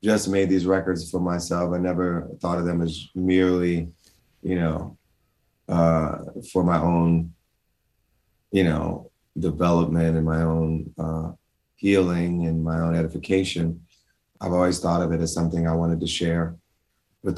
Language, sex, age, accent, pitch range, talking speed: English, male, 30-49, American, 85-95 Hz, 150 wpm